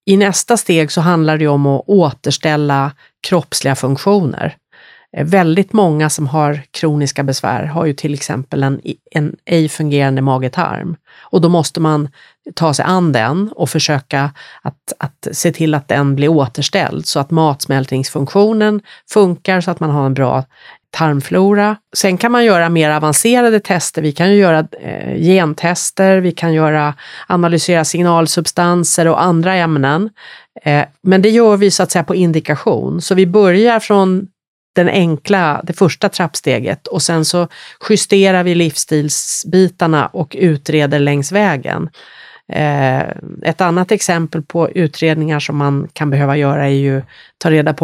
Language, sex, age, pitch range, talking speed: Swedish, female, 30-49, 145-185 Hz, 150 wpm